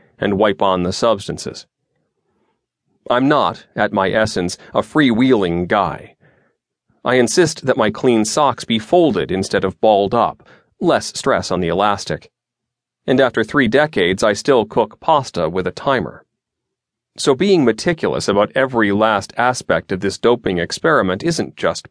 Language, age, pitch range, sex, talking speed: English, 40-59, 100-130 Hz, male, 150 wpm